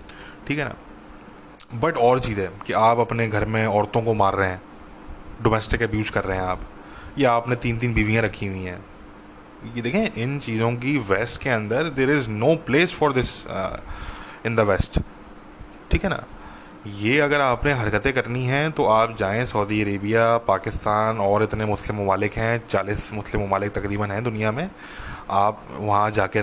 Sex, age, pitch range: male, 20-39, 100-125 Hz